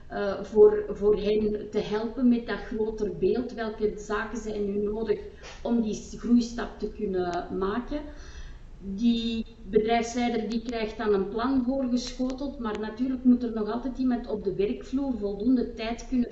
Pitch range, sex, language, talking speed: 205-230 Hz, female, Dutch, 155 wpm